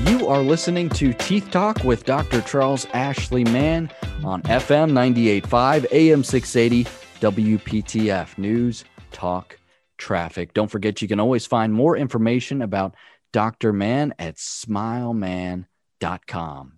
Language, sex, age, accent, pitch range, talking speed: English, male, 30-49, American, 95-125 Hz, 120 wpm